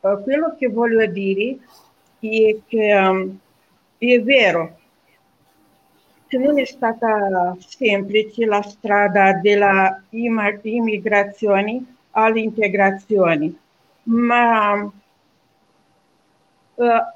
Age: 50-69